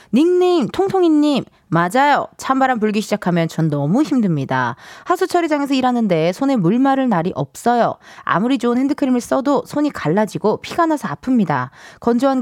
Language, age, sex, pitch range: Korean, 20-39, female, 185-285 Hz